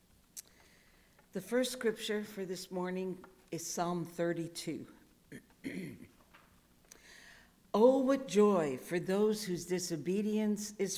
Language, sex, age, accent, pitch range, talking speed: English, female, 60-79, American, 160-195 Hz, 95 wpm